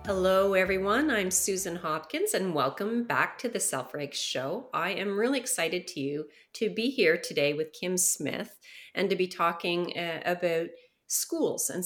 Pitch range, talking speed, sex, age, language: 165-210 Hz, 170 wpm, female, 30-49, English